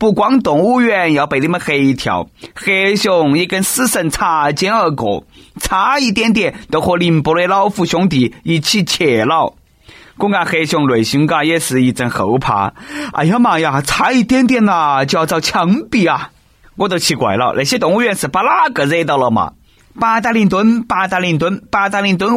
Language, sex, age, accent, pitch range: Chinese, male, 30-49, native, 135-195 Hz